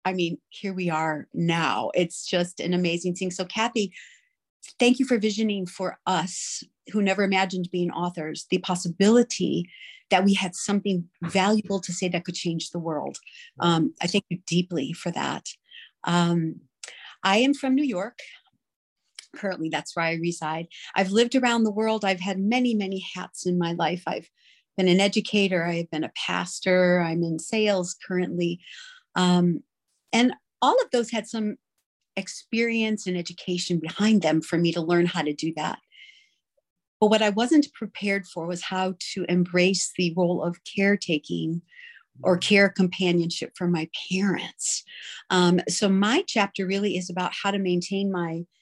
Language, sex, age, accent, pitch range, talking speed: English, female, 40-59, American, 175-210 Hz, 160 wpm